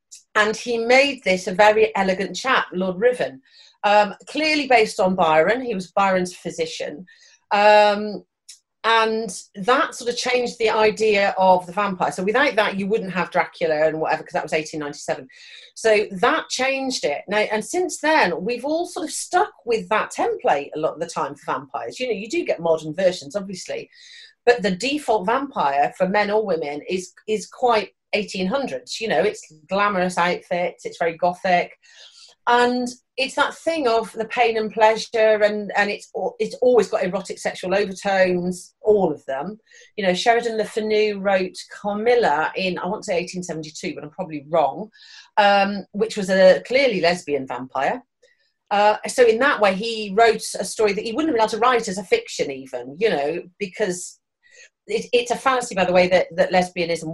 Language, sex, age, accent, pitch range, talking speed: English, female, 40-59, British, 185-245 Hz, 180 wpm